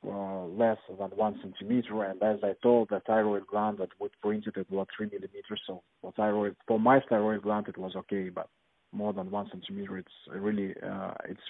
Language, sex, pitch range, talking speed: English, male, 100-120 Hz, 200 wpm